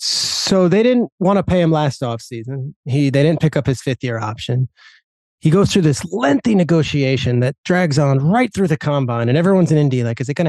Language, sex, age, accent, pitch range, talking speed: English, male, 30-49, American, 135-175 Hz, 210 wpm